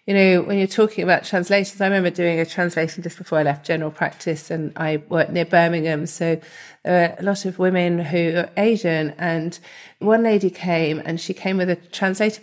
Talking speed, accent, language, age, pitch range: 200 wpm, British, English, 40-59, 170-195 Hz